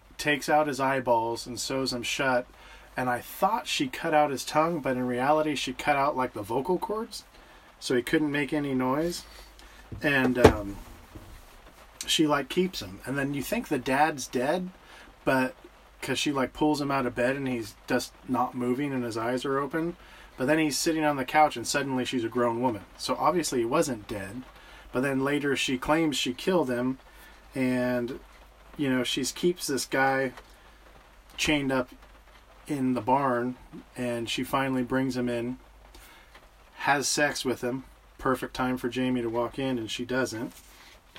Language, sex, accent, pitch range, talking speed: English, male, American, 120-140 Hz, 180 wpm